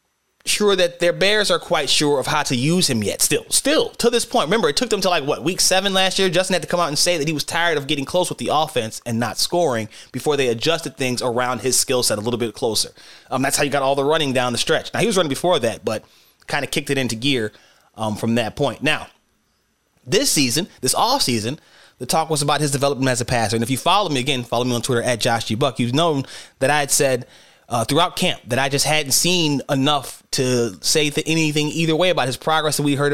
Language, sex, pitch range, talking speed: English, male, 130-175 Hz, 260 wpm